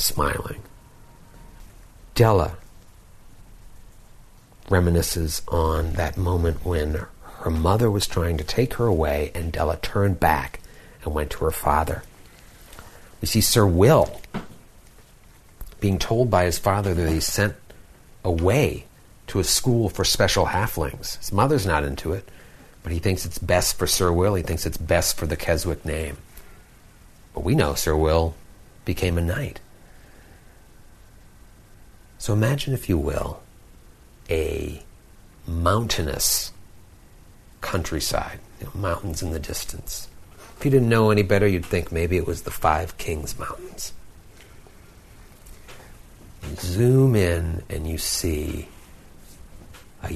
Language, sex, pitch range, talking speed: English, male, 80-100 Hz, 130 wpm